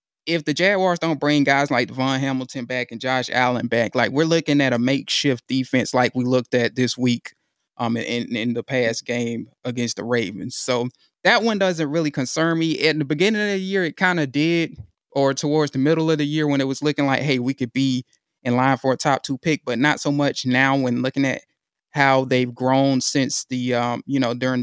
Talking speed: 225 wpm